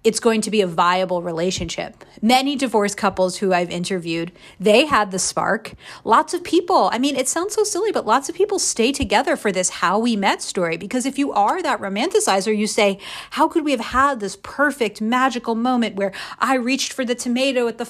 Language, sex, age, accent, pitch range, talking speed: English, female, 40-59, American, 195-255 Hz, 210 wpm